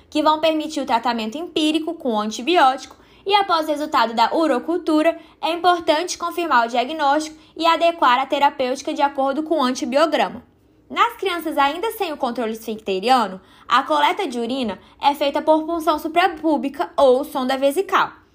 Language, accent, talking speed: Portuguese, Brazilian, 155 wpm